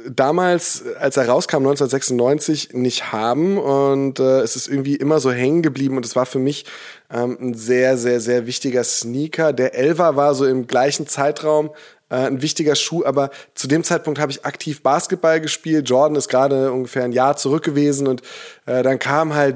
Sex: male